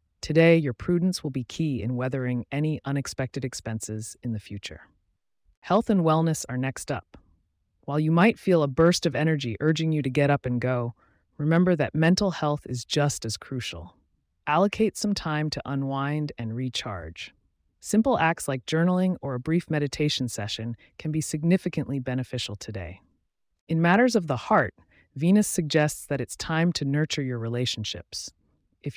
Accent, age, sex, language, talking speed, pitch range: American, 30-49, female, English, 165 wpm, 120-165 Hz